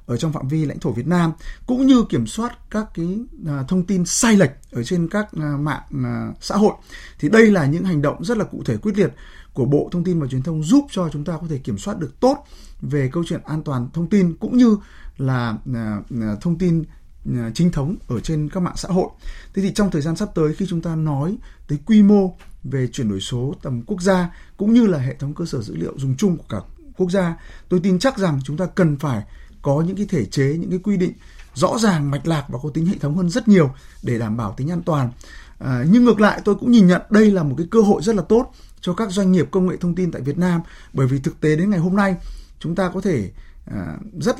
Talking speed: 250 wpm